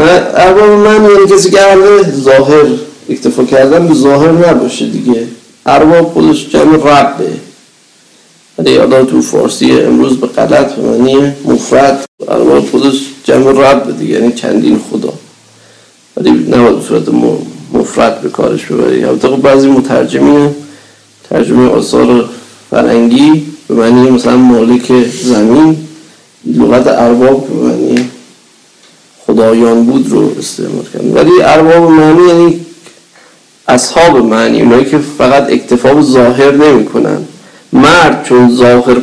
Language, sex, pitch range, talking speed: Persian, male, 115-150 Hz, 95 wpm